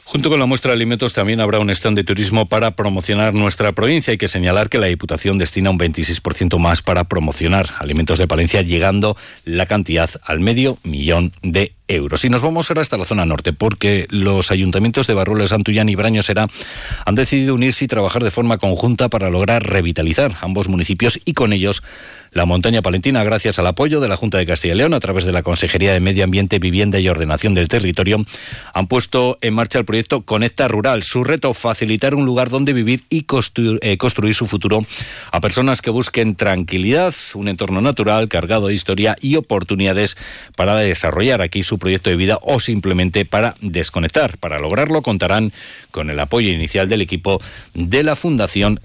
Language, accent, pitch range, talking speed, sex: Spanish, Spanish, 95-120 Hz, 190 wpm, male